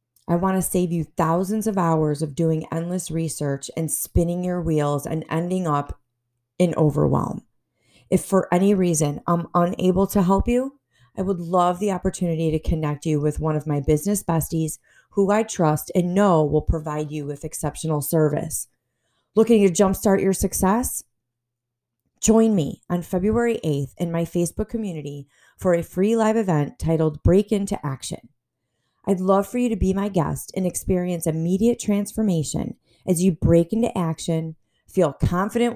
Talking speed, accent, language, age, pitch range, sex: 165 wpm, American, English, 30-49, 150-195 Hz, female